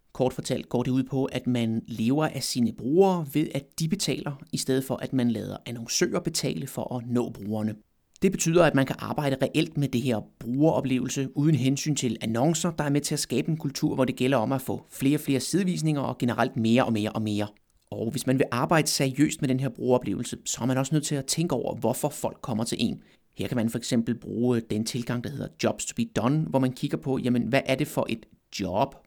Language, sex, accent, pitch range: Danish, male, native, 120-150 Hz